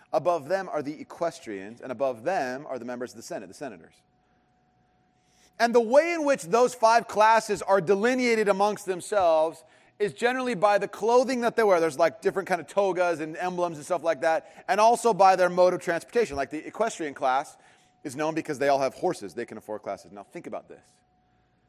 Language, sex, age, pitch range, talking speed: English, male, 30-49, 155-220 Hz, 205 wpm